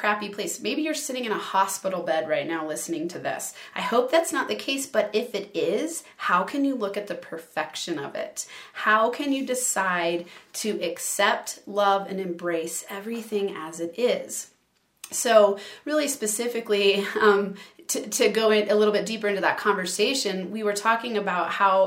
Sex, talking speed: female, 180 wpm